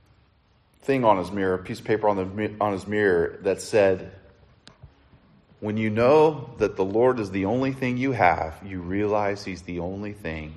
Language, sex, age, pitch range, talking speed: English, male, 40-59, 95-150 Hz, 185 wpm